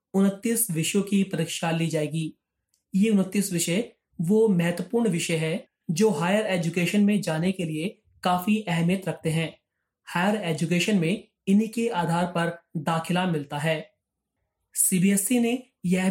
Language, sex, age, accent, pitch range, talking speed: Hindi, male, 30-49, native, 165-205 Hz, 135 wpm